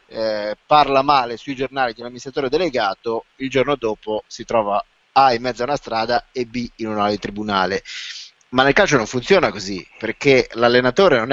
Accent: native